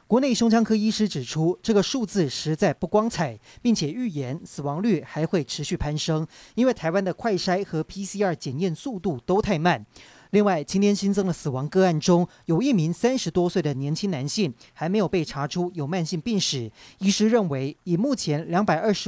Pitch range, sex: 155-205 Hz, male